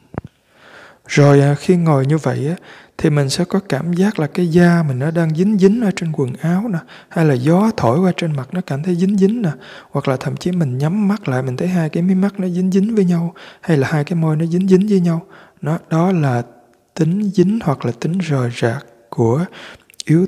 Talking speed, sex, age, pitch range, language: 230 wpm, male, 20-39, 140-180 Hz, Vietnamese